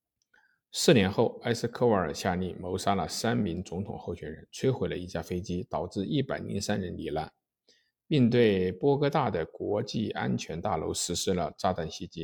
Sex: male